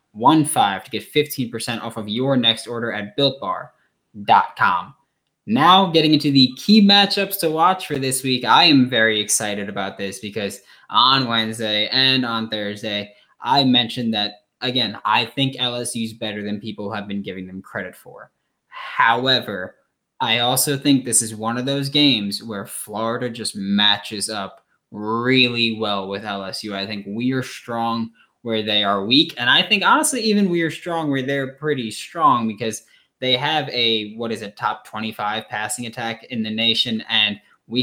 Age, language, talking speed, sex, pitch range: 10-29, English, 170 wpm, male, 110-140 Hz